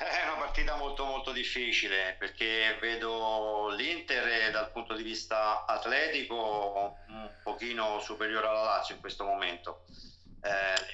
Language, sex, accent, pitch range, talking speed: Italian, male, native, 90-110 Hz, 125 wpm